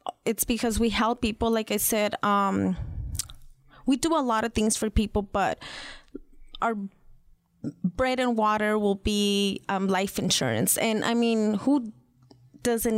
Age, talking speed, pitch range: 20-39, 150 wpm, 205-245 Hz